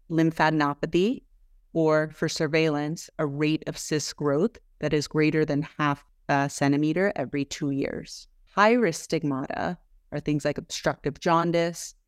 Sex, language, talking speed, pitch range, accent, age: female, English, 135 wpm, 140-165 Hz, American, 30-49